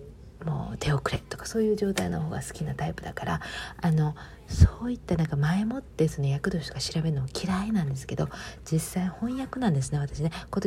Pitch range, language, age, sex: 145-185 Hz, Japanese, 40-59, female